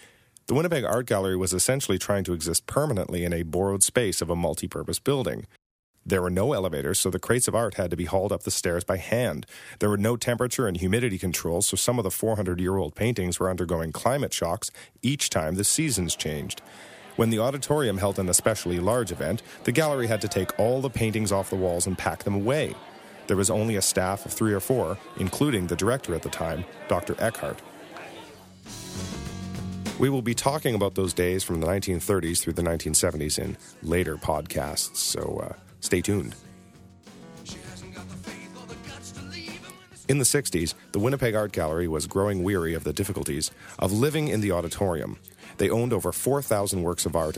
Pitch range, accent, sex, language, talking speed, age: 85-110 Hz, American, male, English, 180 wpm, 40-59